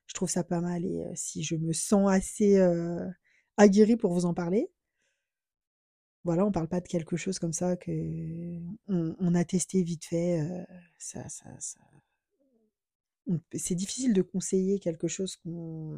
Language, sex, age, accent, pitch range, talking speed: French, female, 20-39, French, 175-205 Hz, 175 wpm